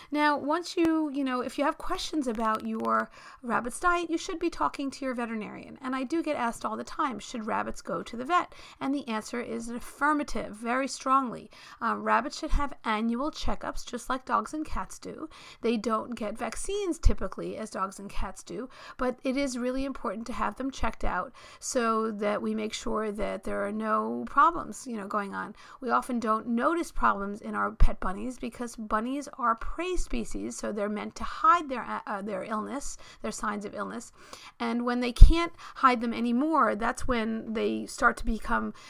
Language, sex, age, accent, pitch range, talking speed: English, female, 40-59, American, 215-275 Hz, 195 wpm